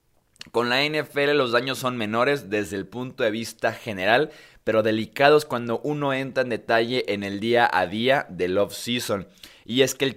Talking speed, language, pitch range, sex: 185 wpm, Spanish, 110-135 Hz, male